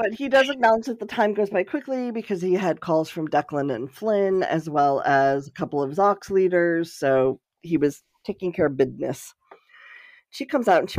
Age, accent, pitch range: 40-59, American, 155-225 Hz